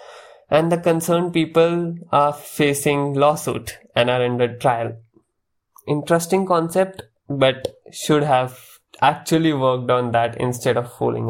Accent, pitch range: Indian, 125-170 Hz